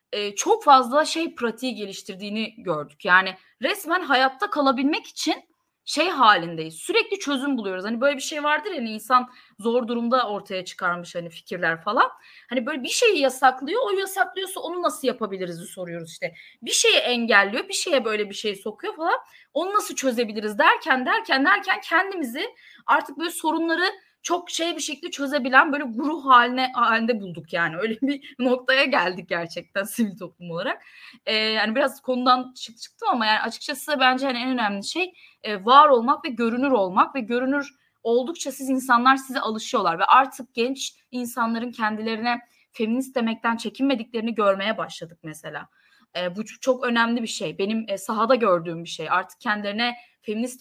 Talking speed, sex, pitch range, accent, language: 155 wpm, female, 210-285 Hz, native, Turkish